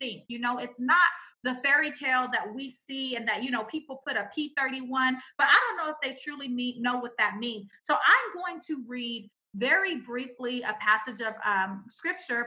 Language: English